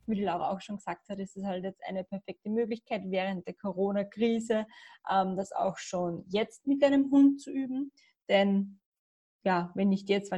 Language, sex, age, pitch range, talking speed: German, female, 20-39, 195-230 Hz, 190 wpm